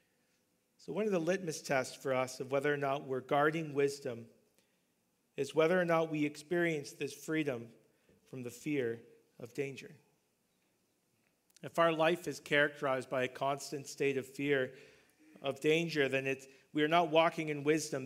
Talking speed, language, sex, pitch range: 160 wpm, English, male, 135-160 Hz